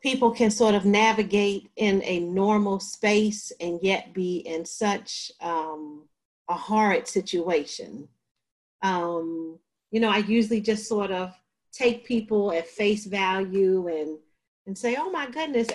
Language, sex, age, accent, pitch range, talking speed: English, female, 40-59, American, 185-220 Hz, 140 wpm